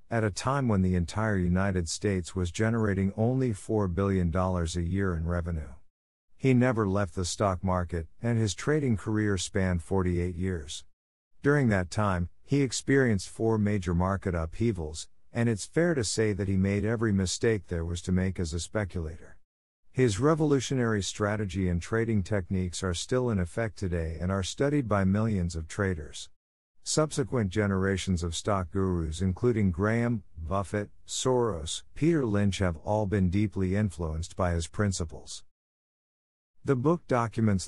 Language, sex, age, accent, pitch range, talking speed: English, male, 50-69, American, 85-110 Hz, 155 wpm